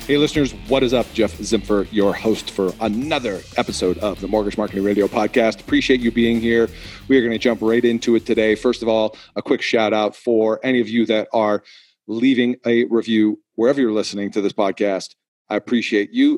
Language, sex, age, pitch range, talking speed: English, male, 40-59, 105-125 Hz, 205 wpm